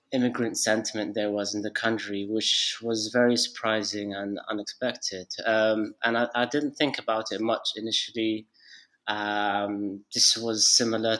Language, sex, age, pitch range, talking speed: Turkish, male, 20-39, 105-120 Hz, 145 wpm